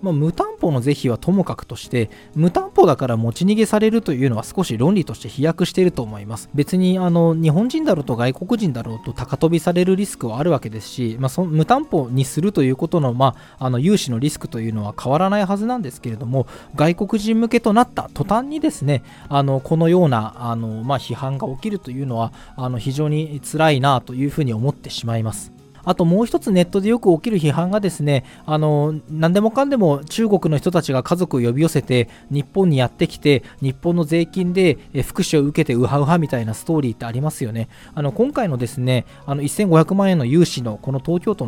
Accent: native